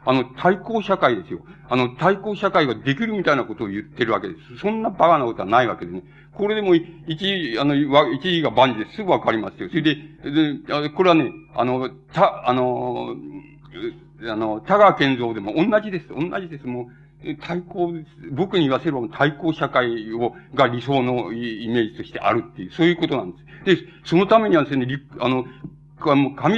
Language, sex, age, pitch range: Japanese, male, 60-79, 130-175 Hz